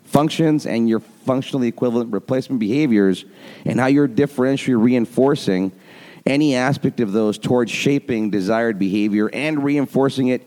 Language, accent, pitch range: English, American, 100-125 Hz